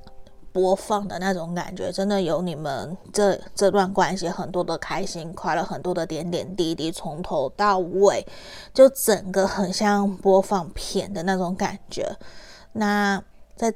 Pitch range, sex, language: 175-200 Hz, female, Chinese